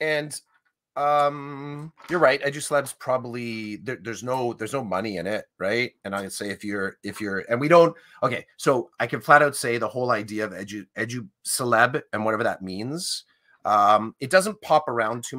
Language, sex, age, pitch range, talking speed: English, male, 30-49, 110-145 Hz, 195 wpm